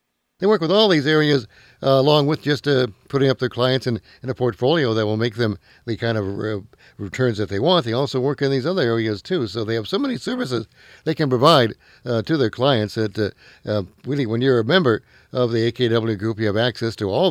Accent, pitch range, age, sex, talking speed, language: American, 105-140 Hz, 60-79, male, 235 wpm, English